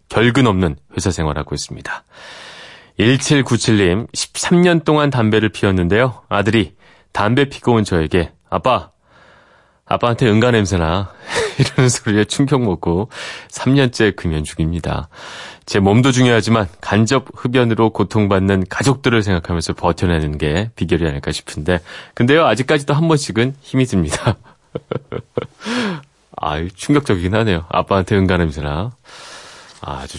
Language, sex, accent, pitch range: Korean, male, native, 95-135 Hz